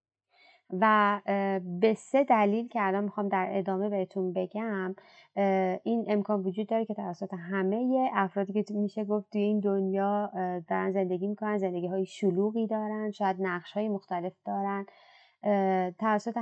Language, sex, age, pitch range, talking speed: Persian, female, 30-49, 190-220 Hz, 135 wpm